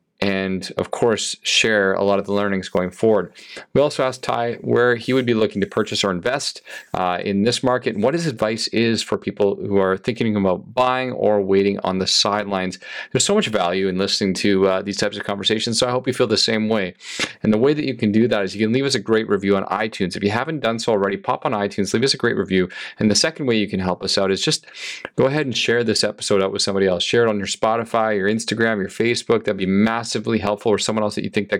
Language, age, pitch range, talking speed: English, 30-49, 100-125 Hz, 265 wpm